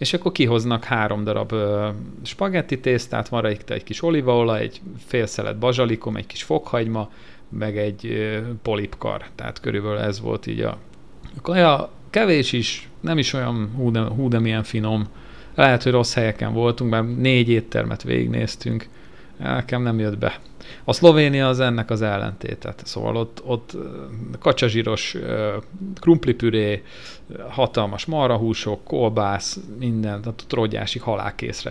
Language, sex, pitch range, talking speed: Hungarian, male, 105-125 Hz, 135 wpm